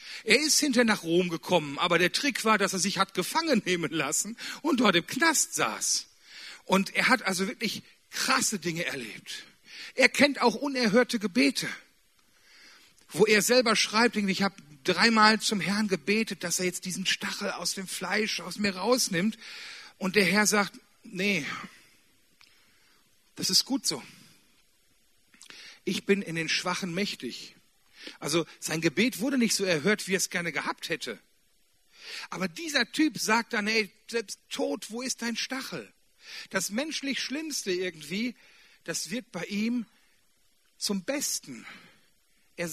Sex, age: male, 40-59